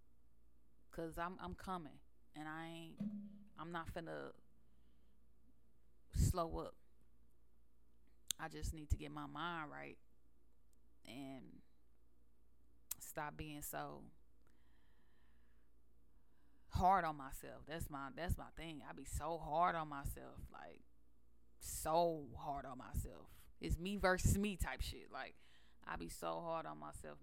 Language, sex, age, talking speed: English, female, 20-39, 125 wpm